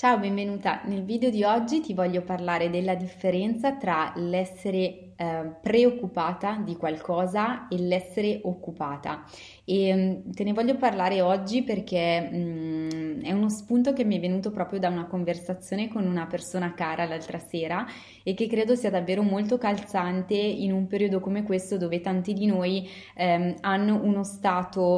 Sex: female